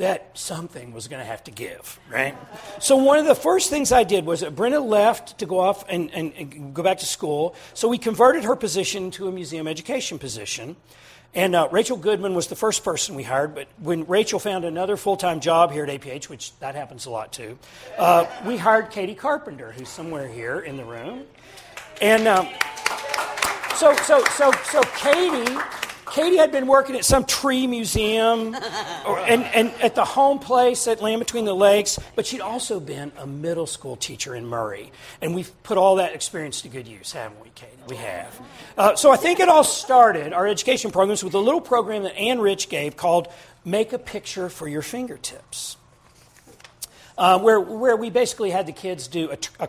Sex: male